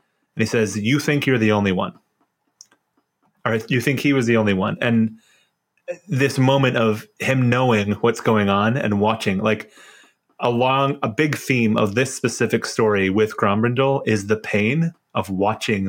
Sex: male